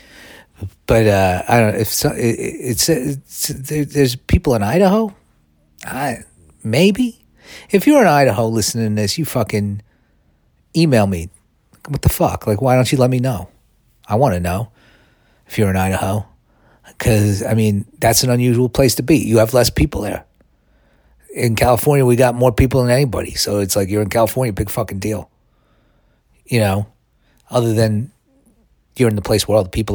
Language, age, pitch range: English, 40-59, 95-130 Hz